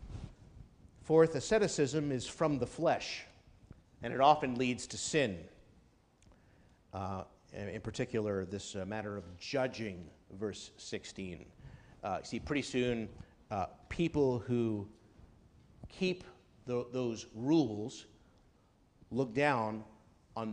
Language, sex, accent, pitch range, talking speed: English, male, American, 110-155 Hz, 105 wpm